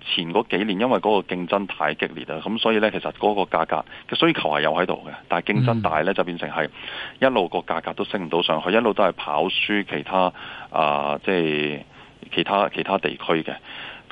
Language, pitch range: Chinese, 80-100 Hz